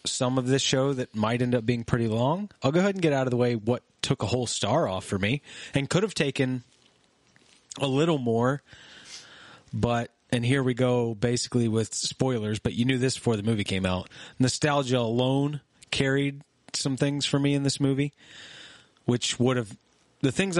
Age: 30-49